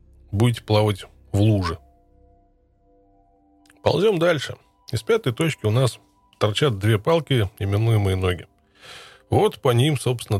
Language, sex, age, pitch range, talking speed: Russian, male, 20-39, 100-120 Hz, 115 wpm